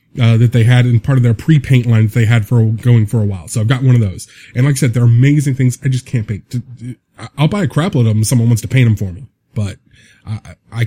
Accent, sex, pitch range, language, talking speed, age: American, male, 110-135 Hz, English, 280 wpm, 20-39